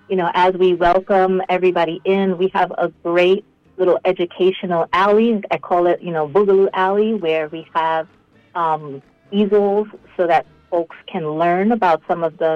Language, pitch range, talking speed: English, 165-200 Hz, 165 wpm